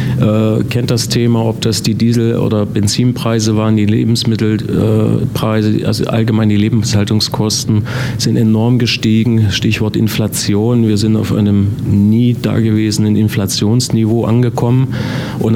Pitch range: 100-115 Hz